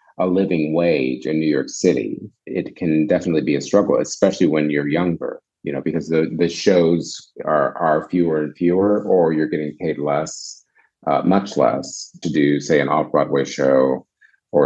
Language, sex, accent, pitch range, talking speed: English, male, American, 75-95 Hz, 175 wpm